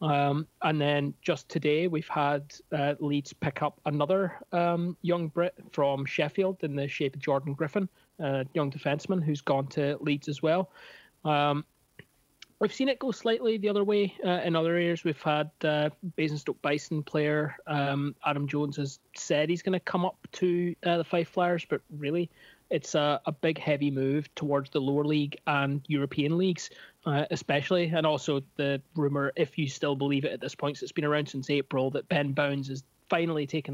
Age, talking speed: 20-39, 190 wpm